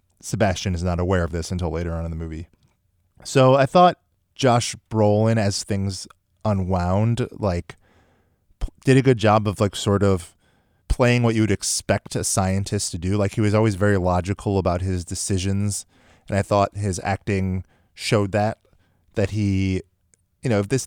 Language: English